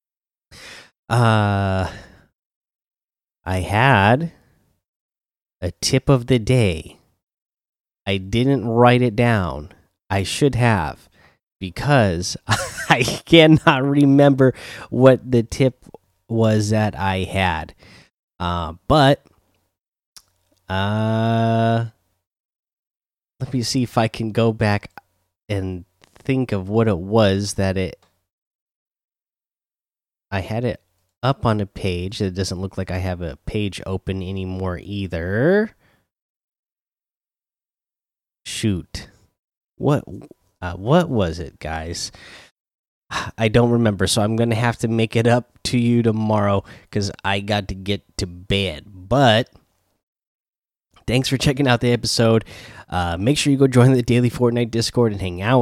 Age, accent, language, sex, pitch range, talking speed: 20-39, American, English, male, 95-120 Hz, 120 wpm